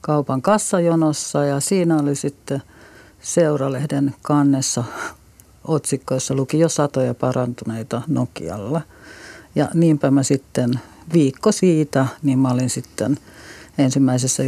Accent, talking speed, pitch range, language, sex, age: native, 100 wpm, 130-155 Hz, Finnish, female, 50-69